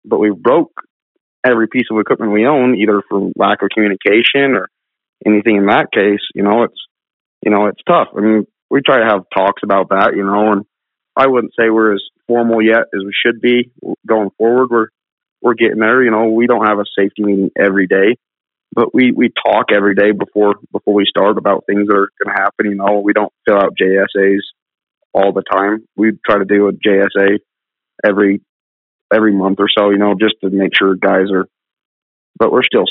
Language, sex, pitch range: English, male, 100-110 Hz